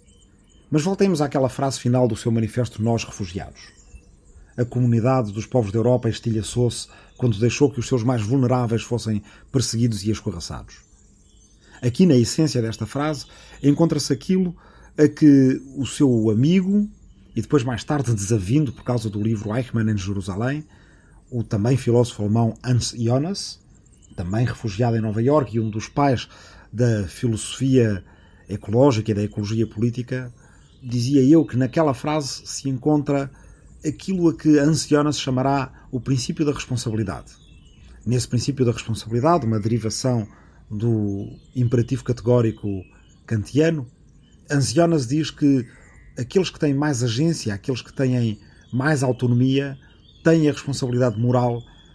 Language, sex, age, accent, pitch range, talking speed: Portuguese, male, 40-59, Portuguese, 110-135 Hz, 135 wpm